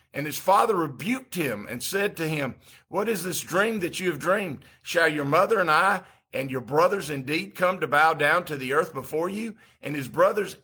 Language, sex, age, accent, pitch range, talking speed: English, male, 50-69, American, 140-170 Hz, 215 wpm